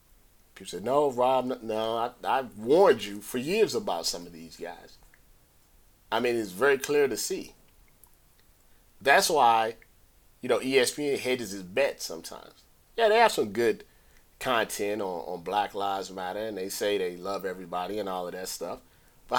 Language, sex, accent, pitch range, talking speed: English, male, American, 100-150 Hz, 170 wpm